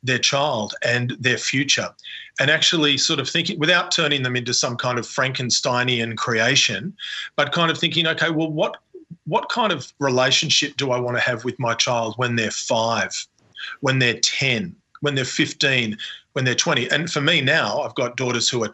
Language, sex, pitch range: English, male, 120-150 Hz